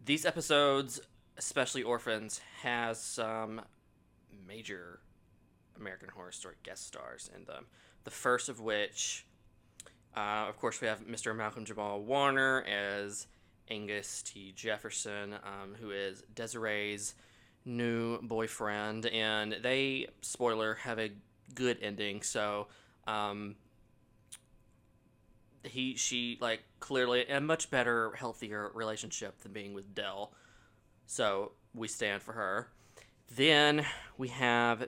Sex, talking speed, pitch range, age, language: male, 115 wpm, 105-125 Hz, 20-39, English